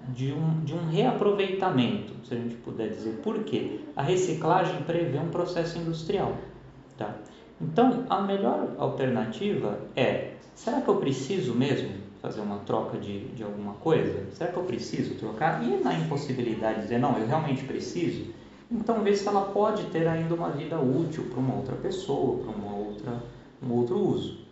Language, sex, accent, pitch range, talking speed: Portuguese, male, Brazilian, 125-175 Hz, 170 wpm